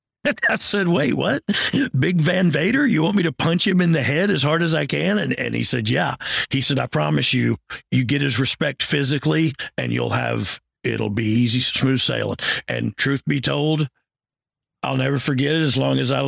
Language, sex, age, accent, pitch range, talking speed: English, male, 50-69, American, 125-150 Hz, 205 wpm